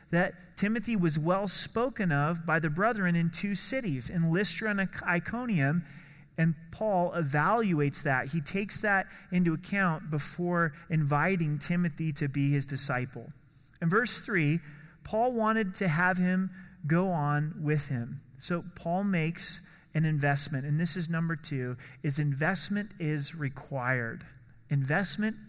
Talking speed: 135 wpm